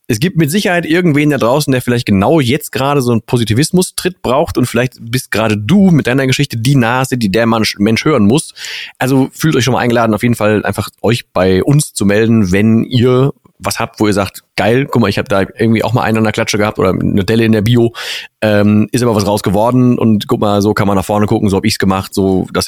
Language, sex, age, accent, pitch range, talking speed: German, male, 30-49, German, 100-140 Hz, 250 wpm